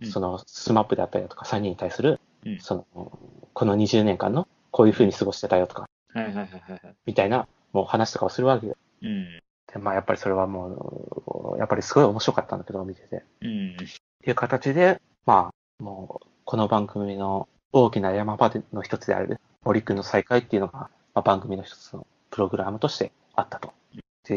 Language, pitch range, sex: Japanese, 100-155 Hz, male